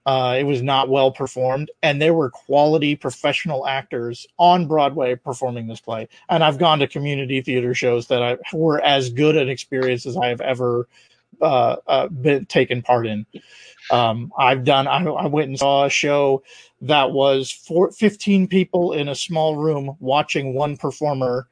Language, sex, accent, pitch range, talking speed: English, male, American, 125-150 Hz, 175 wpm